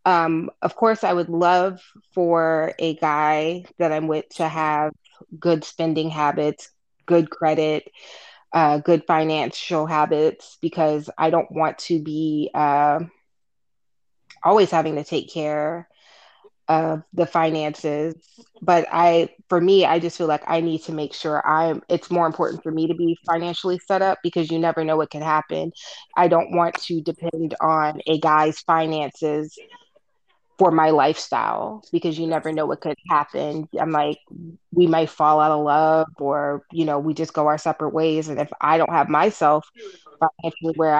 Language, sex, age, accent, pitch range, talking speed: English, female, 20-39, American, 155-185 Hz, 165 wpm